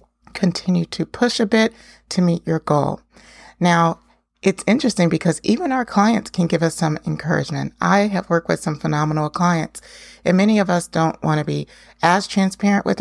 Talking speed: 180 wpm